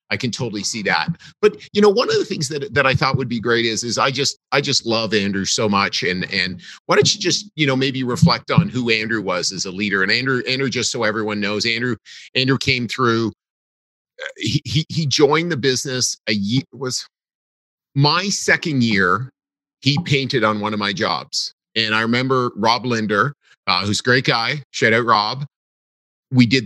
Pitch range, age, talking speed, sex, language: 110-145 Hz, 40-59, 205 wpm, male, English